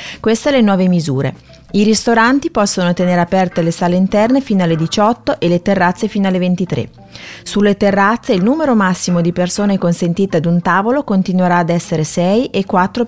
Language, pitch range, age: Italian, 180-235 Hz, 30-49